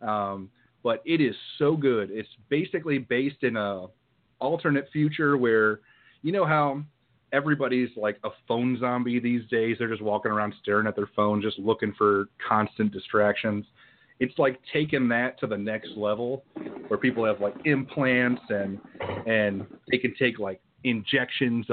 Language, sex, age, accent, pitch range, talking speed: English, male, 30-49, American, 105-130 Hz, 155 wpm